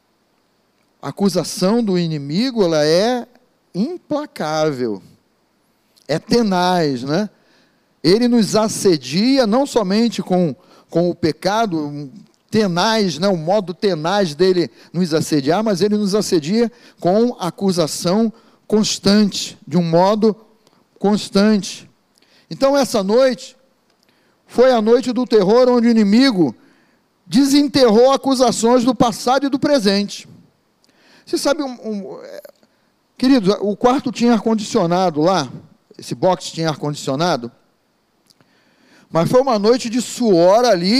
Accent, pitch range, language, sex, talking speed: Brazilian, 180-245 Hz, Portuguese, male, 110 wpm